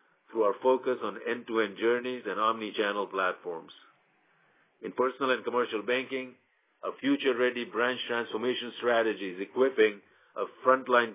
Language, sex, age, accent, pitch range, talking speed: English, male, 50-69, Indian, 115-140 Hz, 125 wpm